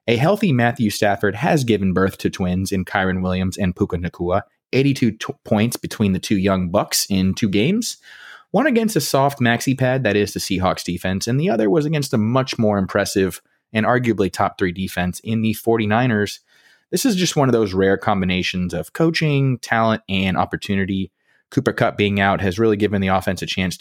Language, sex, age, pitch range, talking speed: English, male, 30-49, 95-120 Hz, 195 wpm